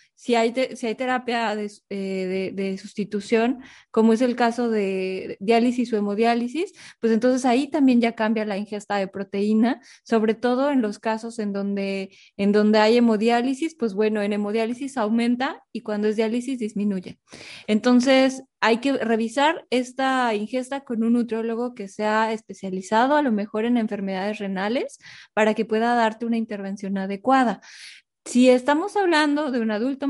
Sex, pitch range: female, 210-260 Hz